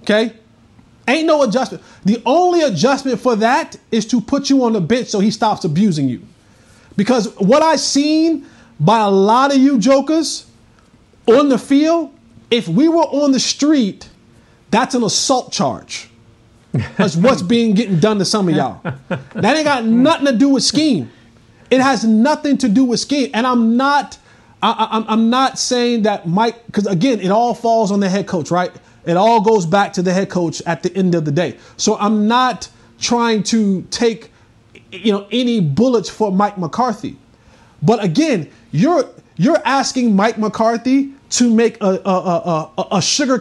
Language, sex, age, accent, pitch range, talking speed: English, male, 30-49, American, 190-260 Hz, 175 wpm